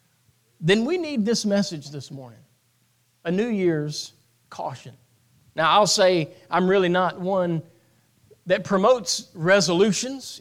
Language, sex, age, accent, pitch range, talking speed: English, male, 40-59, American, 165-215 Hz, 120 wpm